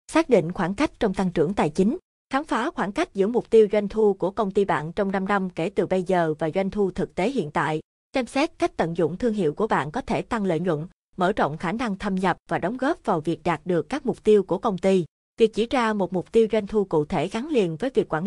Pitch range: 175-225 Hz